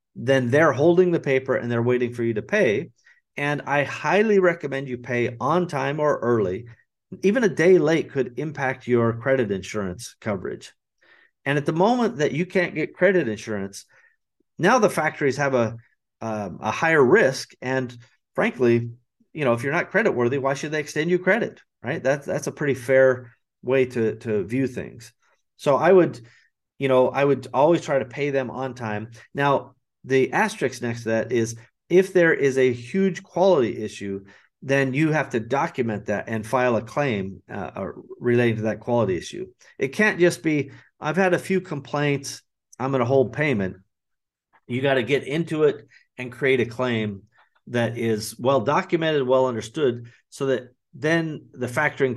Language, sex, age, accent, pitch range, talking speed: English, male, 40-59, American, 115-150 Hz, 180 wpm